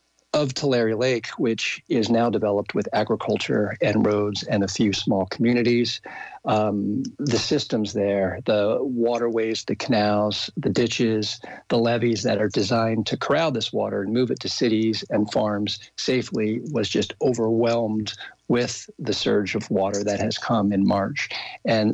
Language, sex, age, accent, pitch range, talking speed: English, male, 50-69, American, 105-115 Hz, 155 wpm